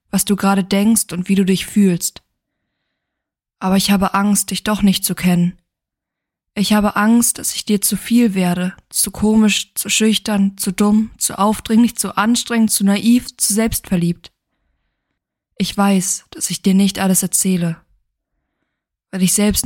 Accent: German